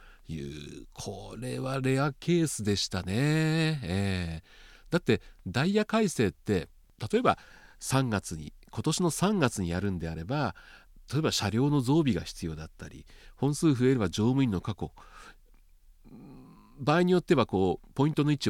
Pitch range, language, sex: 90-145 Hz, Japanese, male